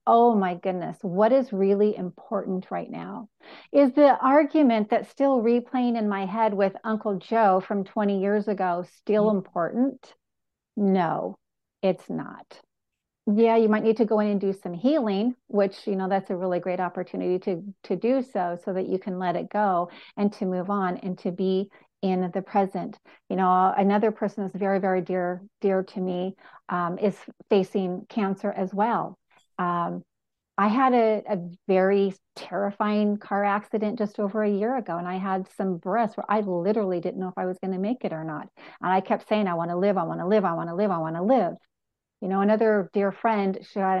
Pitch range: 190-215 Hz